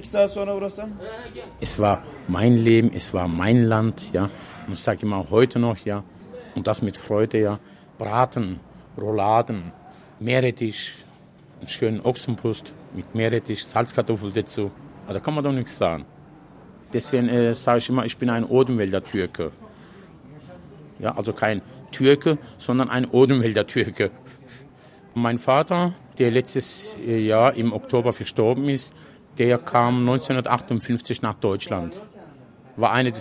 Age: 50-69